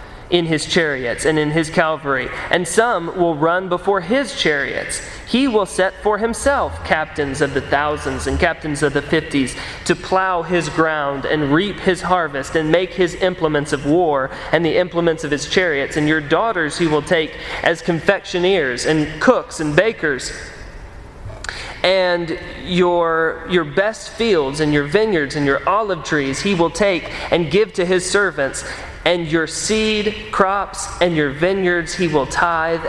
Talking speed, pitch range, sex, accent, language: 165 wpm, 150-190 Hz, male, American, English